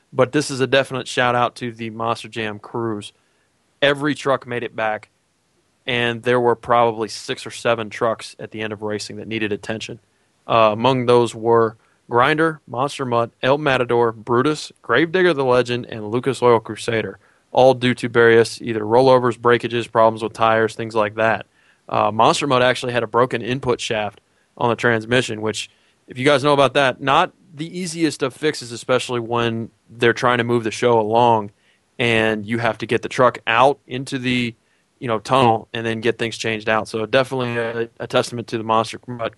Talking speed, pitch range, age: 185 wpm, 115-130 Hz, 20-39